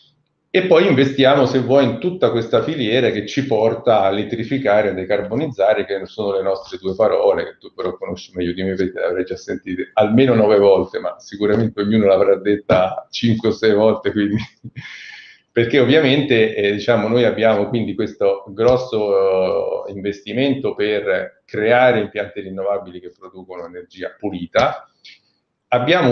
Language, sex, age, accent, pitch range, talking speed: Italian, male, 40-59, native, 105-135 Hz, 150 wpm